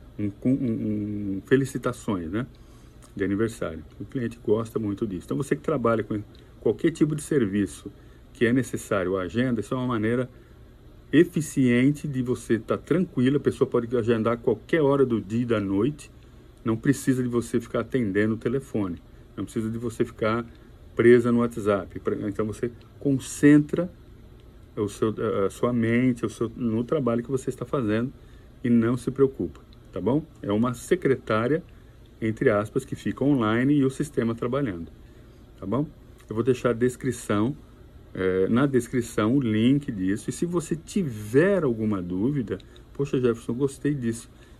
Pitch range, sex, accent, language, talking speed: 110-135 Hz, male, Brazilian, Portuguese, 165 wpm